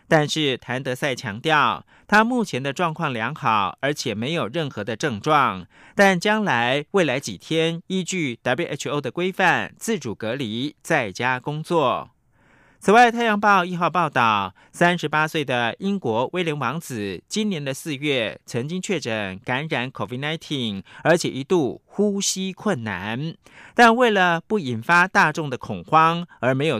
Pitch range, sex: 130-185 Hz, male